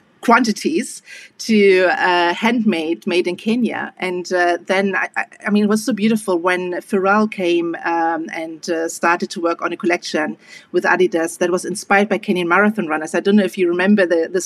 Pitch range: 175-210 Hz